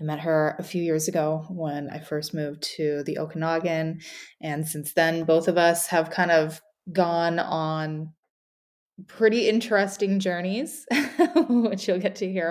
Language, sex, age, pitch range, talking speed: English, female, 20-39, 150-175 Hz, 160 wpm